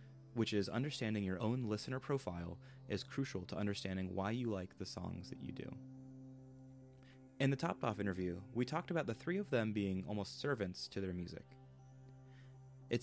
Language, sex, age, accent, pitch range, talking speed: English, male, 20-39, American, 95-130 Hz, 175 wpm